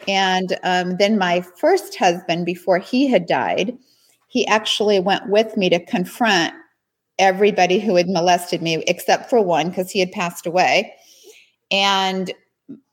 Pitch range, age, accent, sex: 180-220 Hz, 50-69, American, female